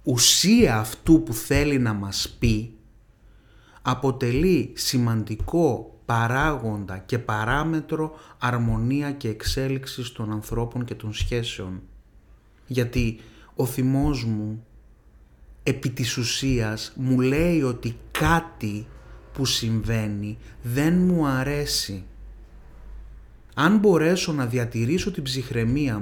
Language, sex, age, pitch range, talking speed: Greek, male, 30-49, 110-155 Hz, 95 wpm